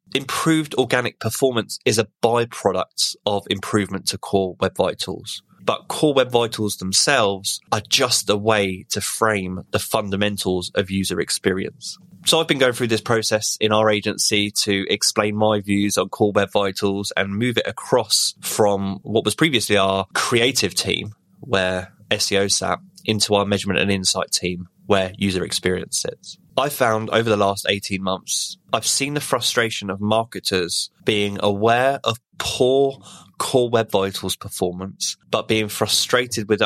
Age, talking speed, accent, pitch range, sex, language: 20-39, 155 wpm, British, 100-115 Hz, male, English